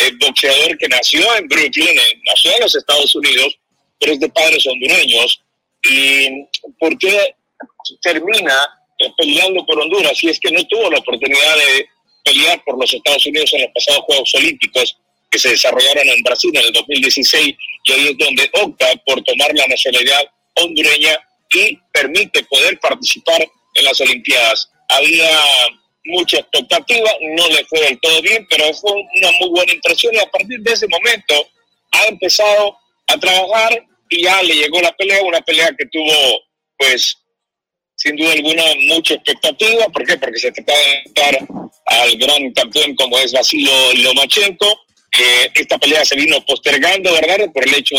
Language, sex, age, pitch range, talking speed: Spanish, male, 50-69, 150-225 Hz, 165 wpm